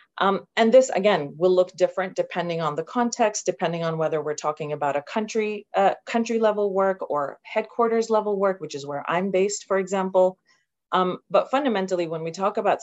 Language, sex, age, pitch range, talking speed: English, female, 30-49, 165-210 Hz, 190 wpm